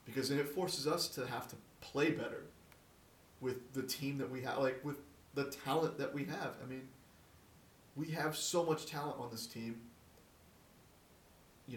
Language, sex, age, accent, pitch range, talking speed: English, male, 30-49, American, 120-150 Hz, 175 wpm